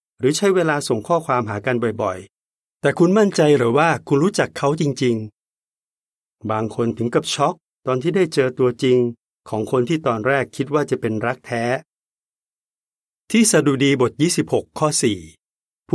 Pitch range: 115-145 Hz